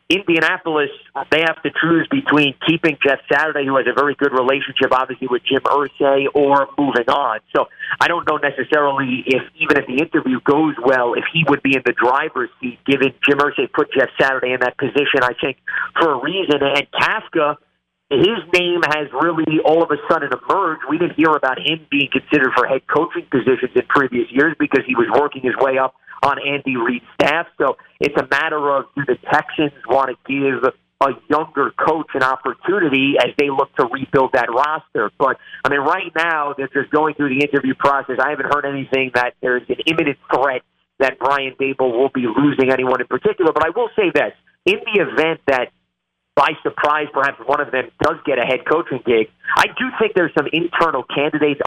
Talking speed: 200 wpm